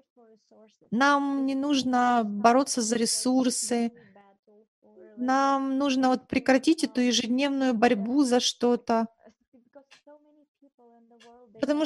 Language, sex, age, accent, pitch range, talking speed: Russian, female, 30-49, native, 230-270 Hz, 75 wpm